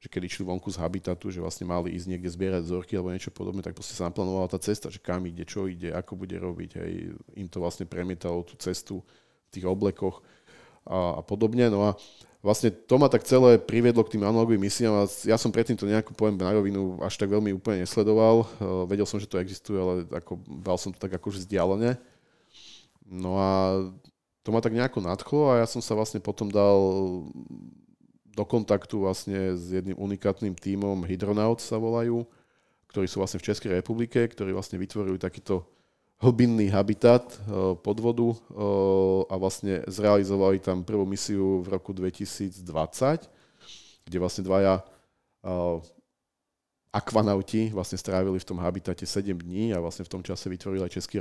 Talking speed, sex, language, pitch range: 170 wpm, male, Slovak, 90-110 Hz